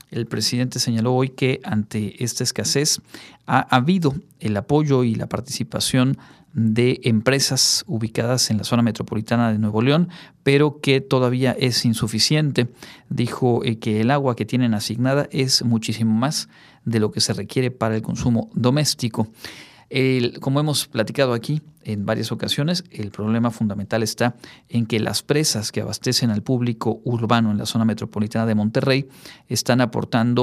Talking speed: 150 wpm